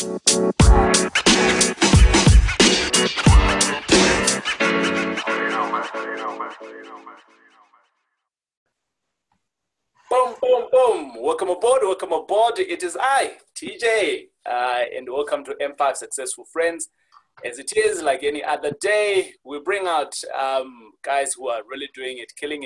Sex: male